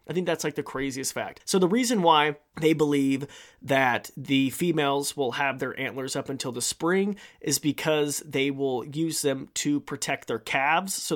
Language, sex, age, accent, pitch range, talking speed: English, male, 30-49, American, 135-175 Hz, 190 wpm